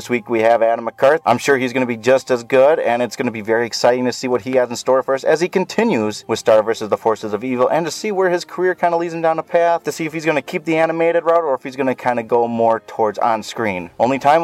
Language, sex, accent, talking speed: English, male, American, 325 wpm